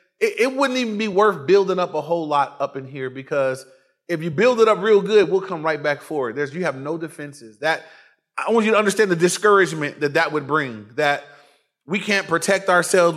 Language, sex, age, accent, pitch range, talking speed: English, male, 30-49, American, 155-215 Hz, 220 wpm